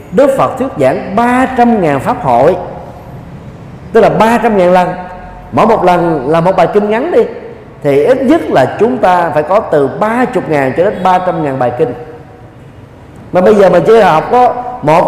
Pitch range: 150-235 Hz